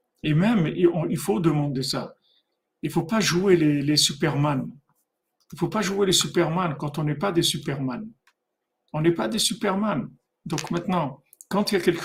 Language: French